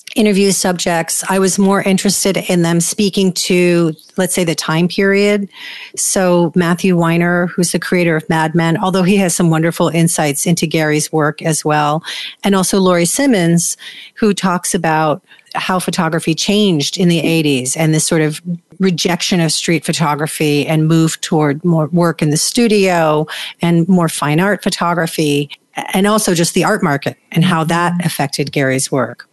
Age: 40-59